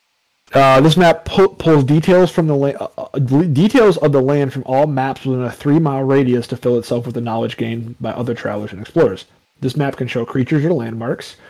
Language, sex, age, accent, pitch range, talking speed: English, male, 30-49, American, 120-150 Hz, 210 wpm